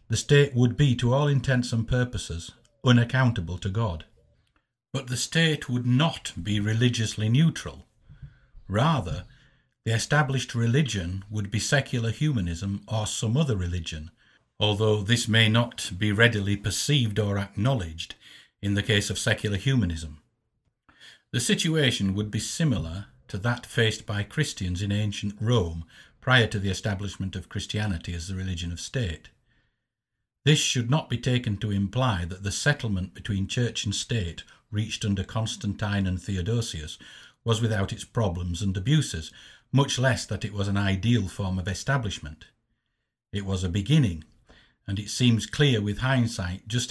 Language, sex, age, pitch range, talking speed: English, male, 60-79, 100-125 Hz, 150 wpm